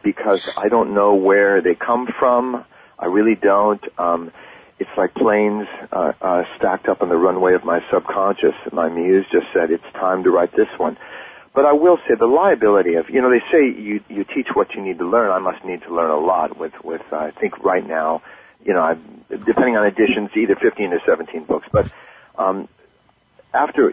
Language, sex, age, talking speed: English, male, 40-59, 210 wpm